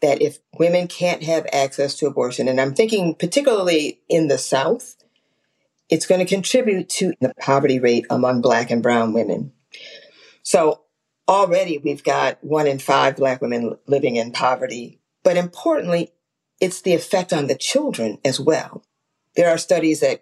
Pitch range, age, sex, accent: 145-195 Hz, 50-69, female, American